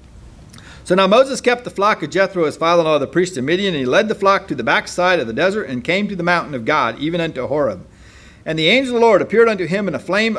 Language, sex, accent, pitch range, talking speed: English, male, American, 130-195 Hz, 275 wpm